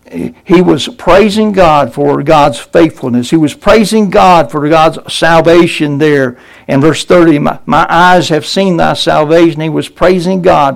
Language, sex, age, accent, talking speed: English, male, 60-79, American, 160 wpm